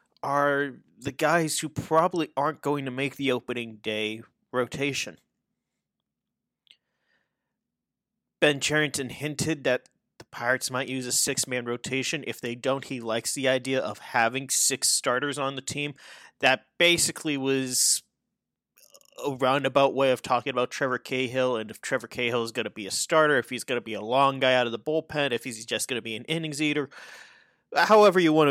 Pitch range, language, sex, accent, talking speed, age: 125-150 Hz, English, male, American, 175 wpm, 30-49